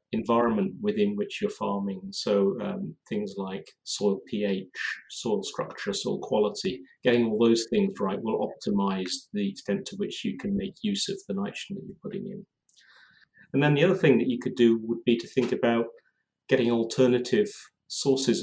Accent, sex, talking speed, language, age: British, male, 175 wpm, English, 40-59